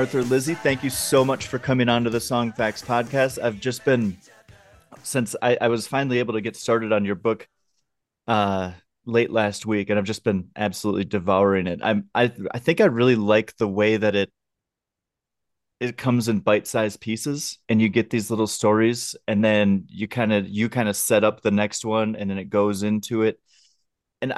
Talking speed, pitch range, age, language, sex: 200 wpm, 100-120 Hz, 30-49, English, male